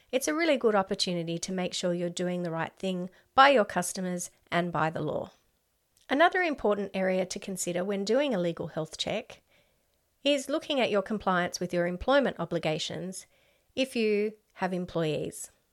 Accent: Australian